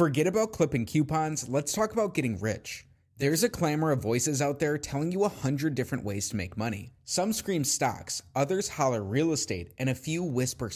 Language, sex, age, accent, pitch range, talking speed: English, male, 30-49, American, 120-150 Hz, 200 wpm